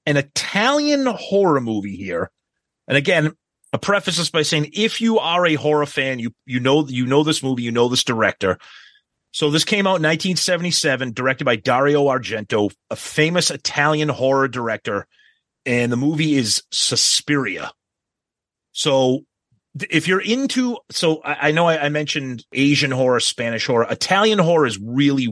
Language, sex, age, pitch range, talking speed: English, male, 30-49, 125-165 Hz, 160 wpm